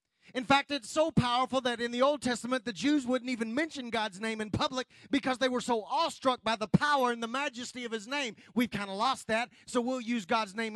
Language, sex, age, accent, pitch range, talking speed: English, male, 30-49, American, 220-270 Hz, 240 wpm